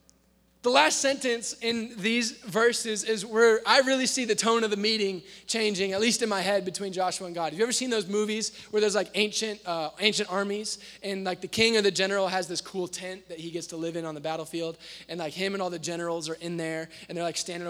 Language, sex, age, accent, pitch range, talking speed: English, male, 20-39, American, 185-235 Hz, 250 wpm